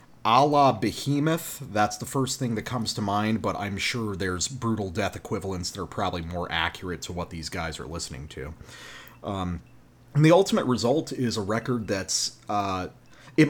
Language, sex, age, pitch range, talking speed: English, male, 30-49, 100-130 Hz, 170 wpm